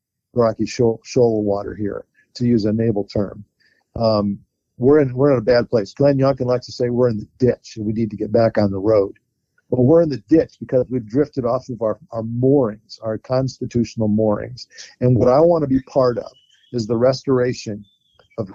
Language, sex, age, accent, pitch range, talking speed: English, male, 50-69, American, 115-140 Hz, 205 wpm